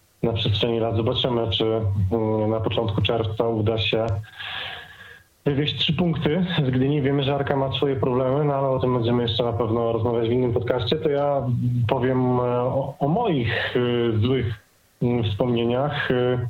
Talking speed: 145 wpm